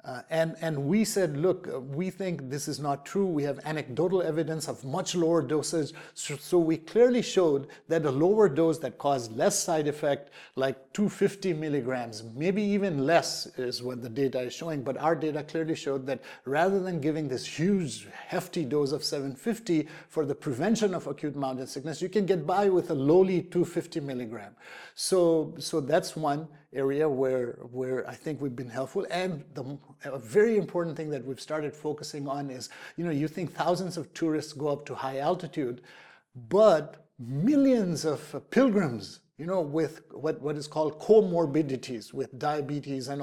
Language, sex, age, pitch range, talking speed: English, male, 50-69, 135-170 Hz, 180 wpm